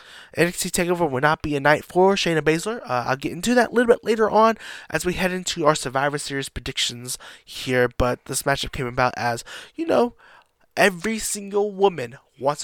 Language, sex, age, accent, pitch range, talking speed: English, male, 20-39, American, 140-185 Hz, 195 wpm